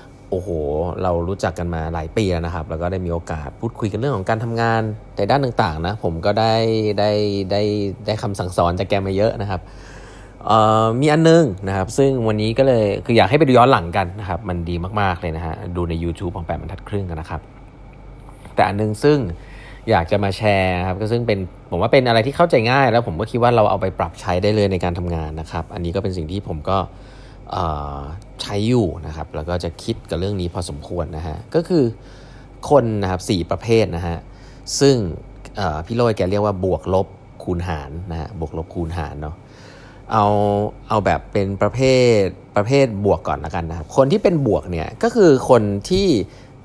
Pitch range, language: 90-115 Hz, Thai